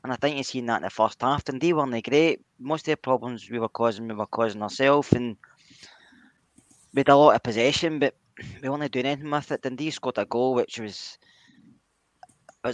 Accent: British